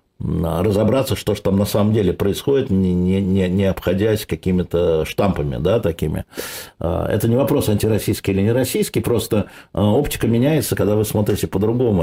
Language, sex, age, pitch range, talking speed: Russian, male, 50-69, 95-115 Hz, 145 wpm